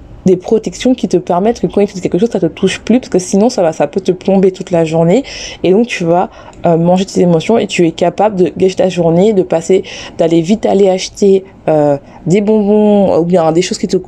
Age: 20-39